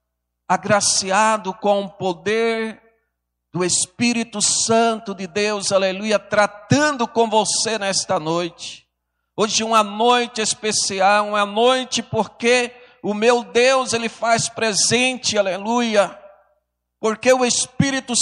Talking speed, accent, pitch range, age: 105 wpm, Brazilian, 205-255 Hz, 50-69